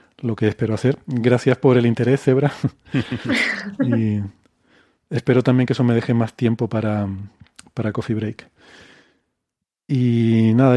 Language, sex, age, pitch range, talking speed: Spanish, male, 40-59, 115-145 Hz, 130 wpm